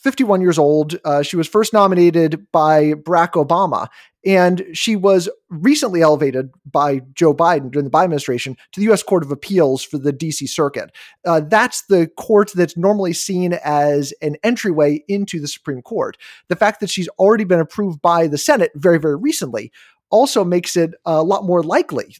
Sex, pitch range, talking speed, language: male, 155-200 Hz, 180 wpm, English